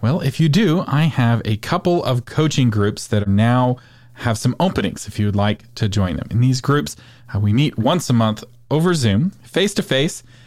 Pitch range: 105-135 Hz